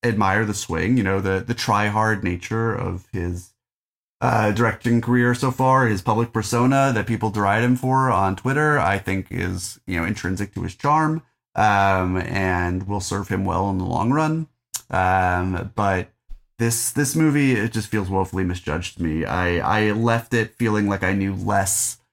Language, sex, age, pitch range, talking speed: English, male, 30-49, 95-120 Hz, 180 wpm